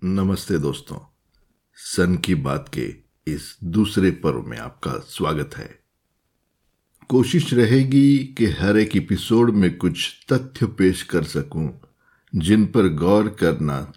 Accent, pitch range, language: native, 95-140 Hz, Hindi